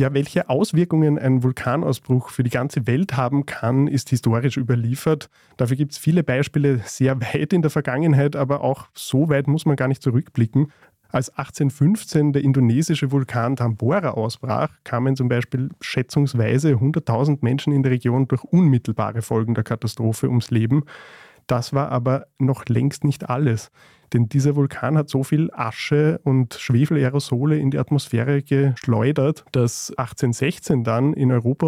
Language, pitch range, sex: German, 120-145 Hz, male